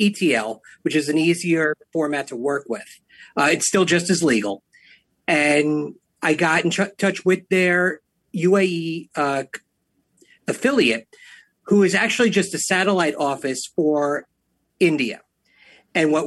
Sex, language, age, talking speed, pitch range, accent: male, English, 40-59, 135 wpm, 150-190 Hz, American